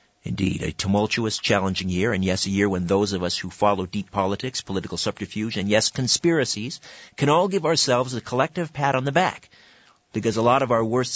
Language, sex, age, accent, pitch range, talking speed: English, male, 50-69, American, 110-140 Hz, 205 wpm